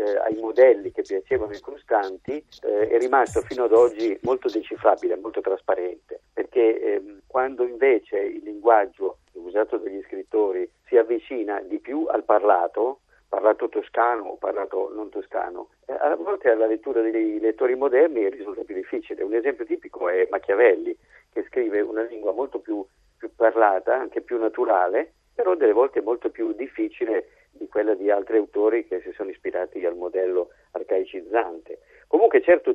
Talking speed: 155 wpm